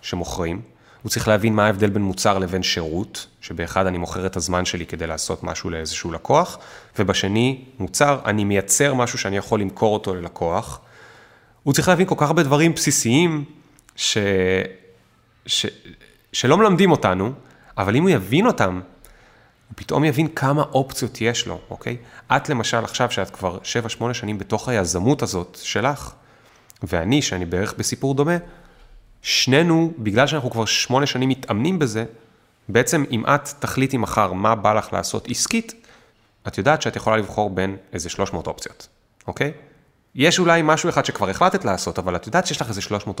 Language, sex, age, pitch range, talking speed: Hebrew, male, 30-49, 95-140 Hz, 160 wpm